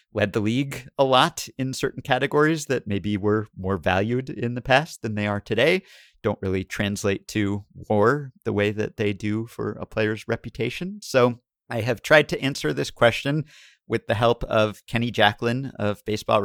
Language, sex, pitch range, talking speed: English, male, 95-120 Hz, 180 wpm